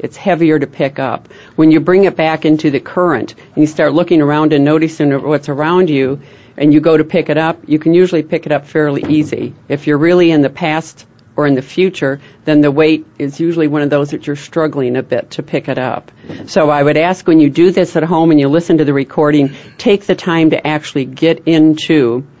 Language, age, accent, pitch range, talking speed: English, 50-69, American, 135-160 Hz, 235 wpm